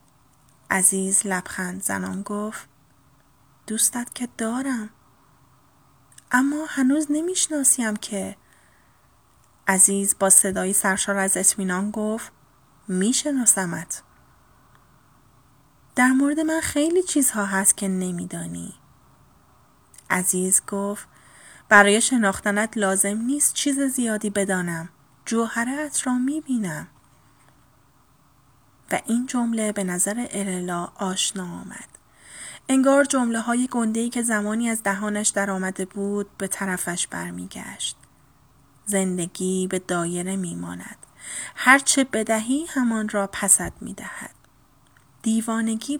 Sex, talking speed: female, 95 wpm